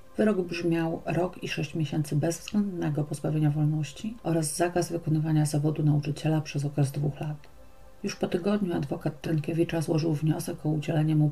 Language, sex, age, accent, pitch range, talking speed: Polish, female, 40-59, native, 150-170 Hz, 150 wpm